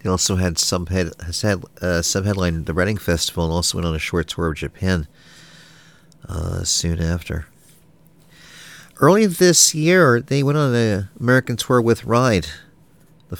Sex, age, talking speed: male, 40-59, 160 wpm